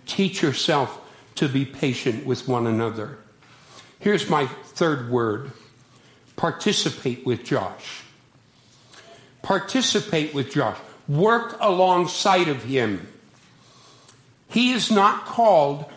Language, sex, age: English, male, 60-79